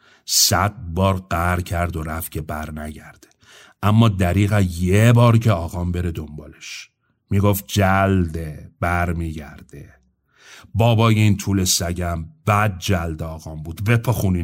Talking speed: 120 wpm